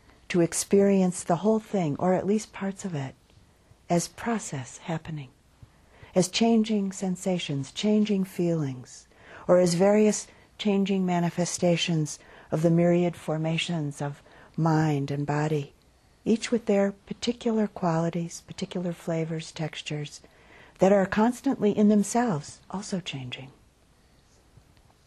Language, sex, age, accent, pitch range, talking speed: English, female, 50-69, American, 150-195 Hz, 110 wpm